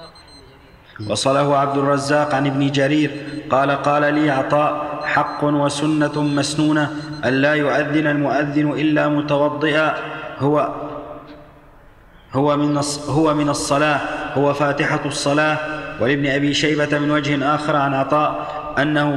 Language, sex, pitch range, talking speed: Arabic, male, 145-150 Hz, 105 wpm